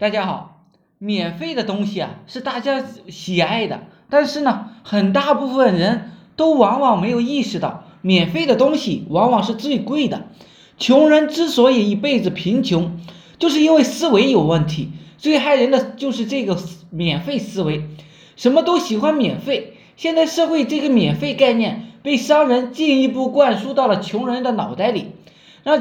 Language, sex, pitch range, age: Chinese, male, 200-285 Hz, 20-39